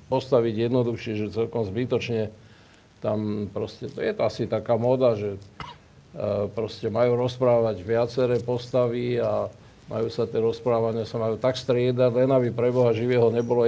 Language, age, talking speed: Slovak, 50-69, 140 wpm